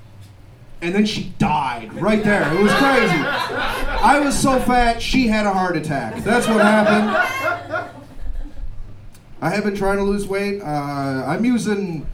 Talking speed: 155 wpm